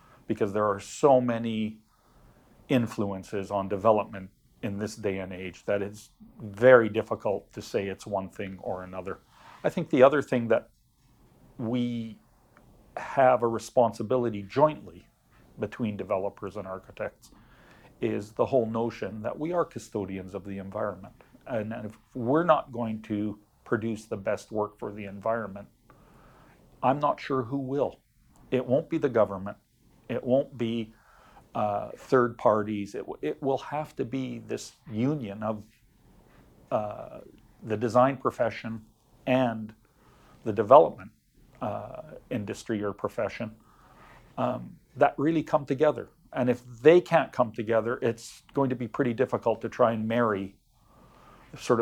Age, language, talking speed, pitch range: 40-59, English, 140 wpm, 105-125 Hz